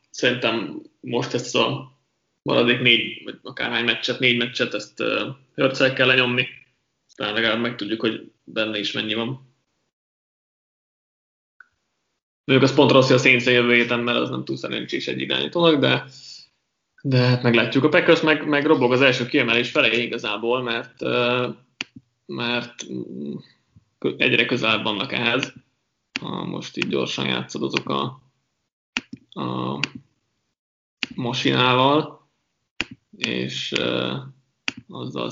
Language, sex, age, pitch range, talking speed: Hungarian, male, 20-39, 115-135 Hz, 125 wpm